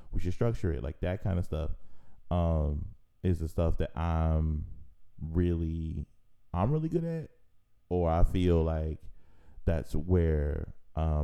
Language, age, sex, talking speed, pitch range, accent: English, 20-39, male, 145 wpm, 80-100 Hz, American